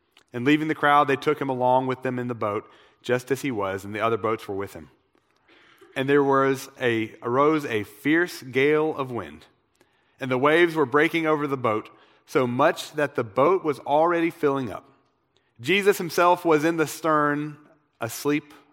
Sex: male